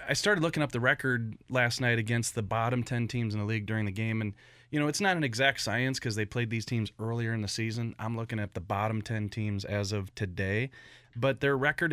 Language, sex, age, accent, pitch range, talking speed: English, male, 30-49, American, 115-140 Hz, 245 wpm